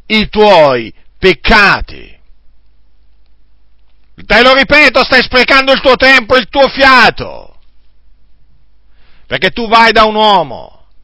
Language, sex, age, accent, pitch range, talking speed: Italian, male, 50-69, native, 190-245 Hz, 110 wpm